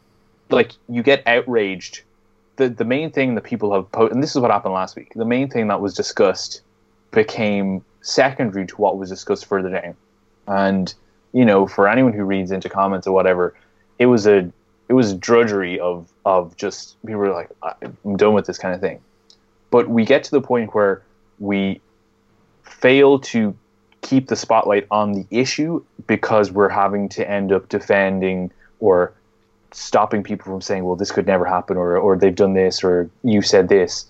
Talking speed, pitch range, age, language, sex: 190 wpm, 95-115 Hz, 20-39, English, male